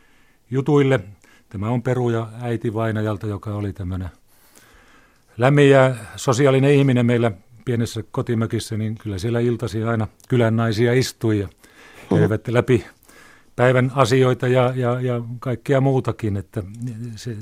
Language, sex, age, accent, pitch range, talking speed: Finnish, male, 40-59, native, 105-125 Hz, 120 wpm